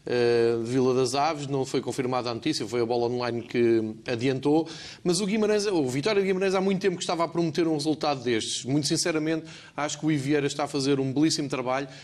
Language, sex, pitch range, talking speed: Portuguese, male, 130-155 Hz, 220 wpm